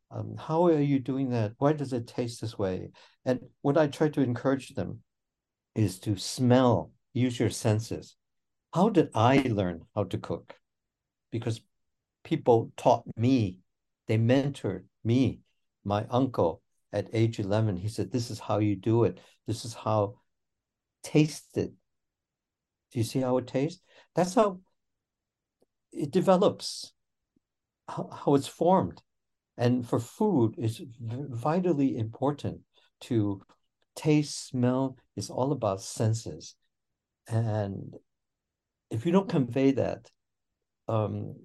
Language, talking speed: English, 130 wpm